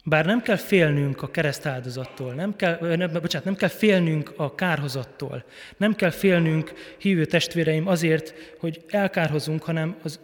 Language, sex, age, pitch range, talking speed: Hungarian, male, 20-39, 150-195 Hz, 135 wpm